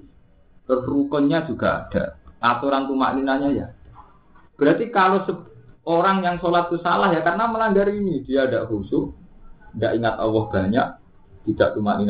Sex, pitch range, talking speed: male, 115-170 Hz, 130 wpm